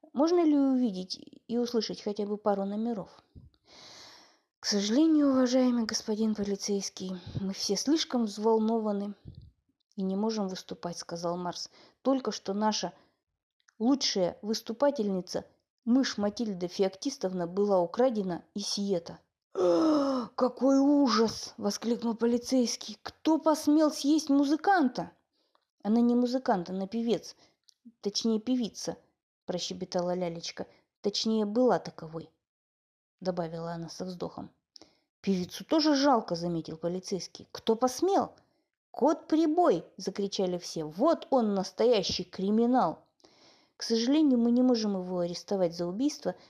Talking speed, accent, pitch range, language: 110 wpm, native, 180-250 Hz, Russian